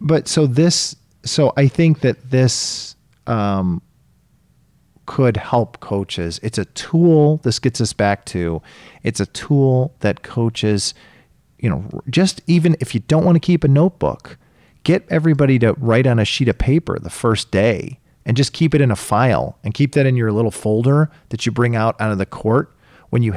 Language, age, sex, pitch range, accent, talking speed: English, 40-59, male, 115-150 Hz, American, 185 wpm